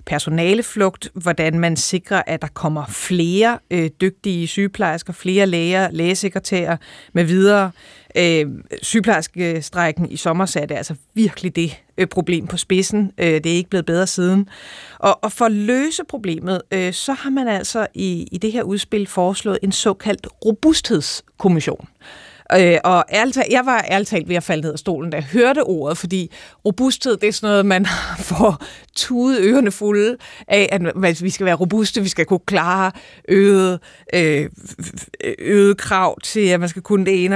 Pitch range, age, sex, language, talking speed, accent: 175-210 Hz, 30-49, female, Danish, 170 wpm, native